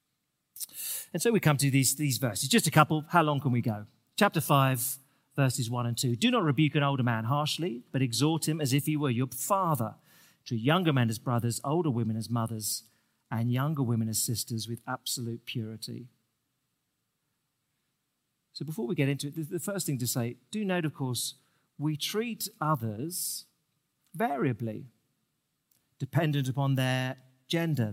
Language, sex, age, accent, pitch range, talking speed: English, male, 40-59, British, 125-160 Hz, 170 wpm